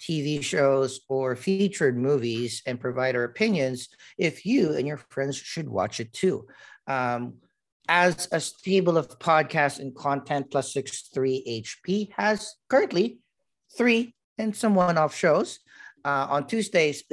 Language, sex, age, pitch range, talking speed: English, male, 50-69, 125-155 Hz, 135 wpm